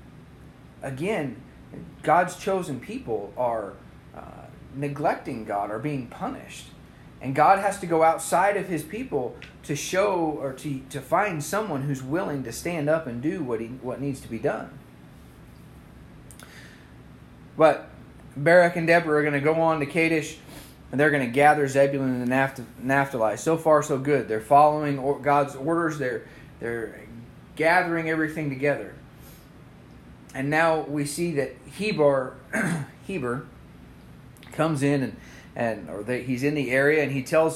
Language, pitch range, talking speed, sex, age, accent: English, 125-155 Hz, 150 wpm, male, 30-49, American